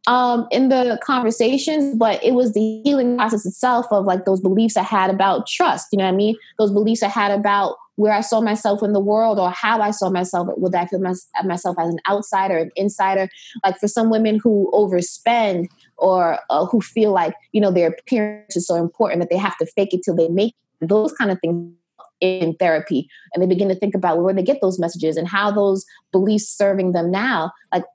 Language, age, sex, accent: English, 20-39, female, American